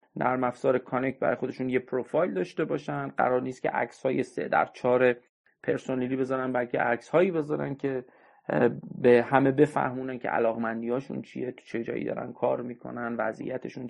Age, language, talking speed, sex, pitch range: 30-49, Persian, 165 wpm, male, 120-140 Hz